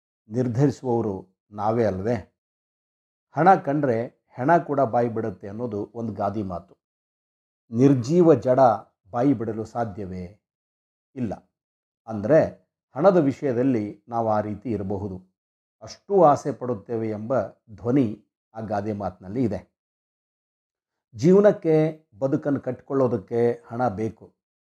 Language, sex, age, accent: Kannada, male, 60-79, native